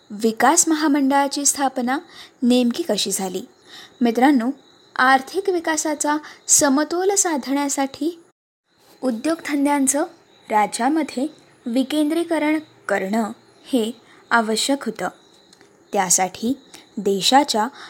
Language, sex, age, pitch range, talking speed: Marathi, female, 20-39, 245-320 Hz, 65 wpm